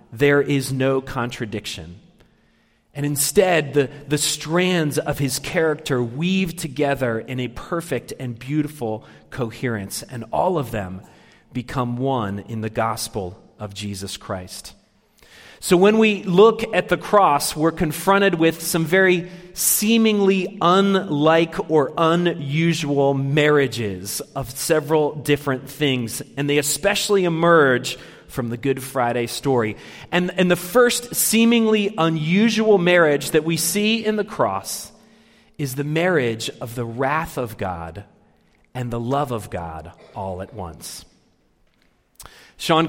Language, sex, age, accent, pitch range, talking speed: English, male, 40-59, American, 120-170 Hz, 130 wpm